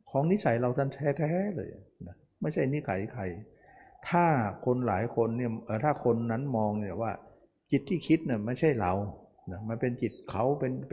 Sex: male